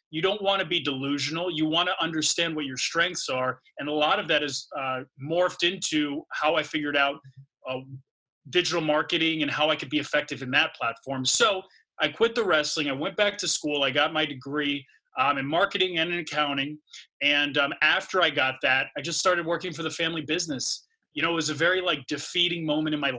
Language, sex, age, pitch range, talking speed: English, male, 30-49, 145-180 Hz, 215 wpm